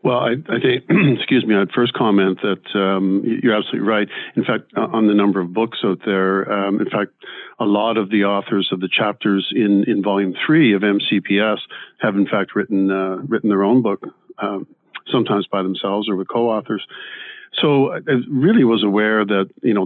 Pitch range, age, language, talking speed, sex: 100-115 Hz, 50-69, English, 195 wpm, male